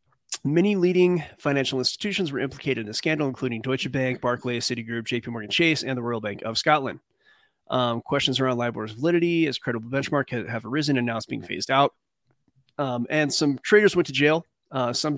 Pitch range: 120-145 Hz